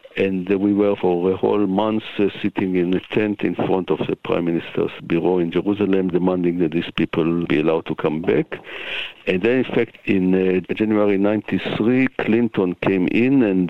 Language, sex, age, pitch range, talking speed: English, male, 60-79, 90-110 Hz, 185 wpm